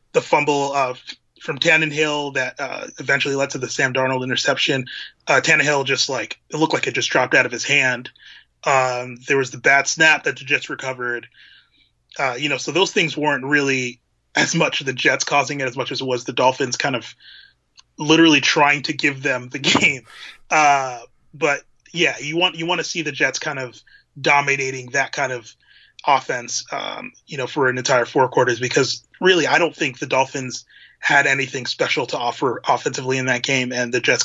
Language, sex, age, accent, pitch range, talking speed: English, male, 20-39, American, 130-160 Hz, 200 wpm